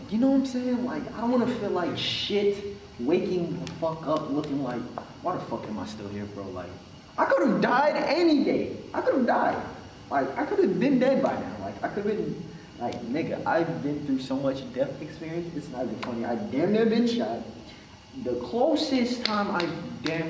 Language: English